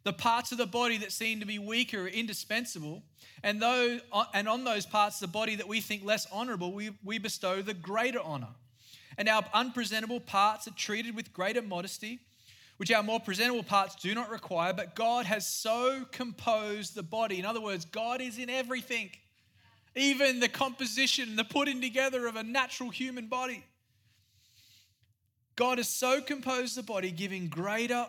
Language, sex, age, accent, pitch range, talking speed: English, male, 20-39, Australian, 145-235 Hz, 175 wpm